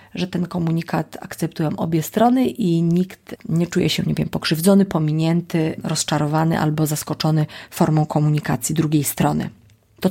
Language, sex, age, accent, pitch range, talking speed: Polish, female, 30-49, native, 160-190 Hz, 135 wpm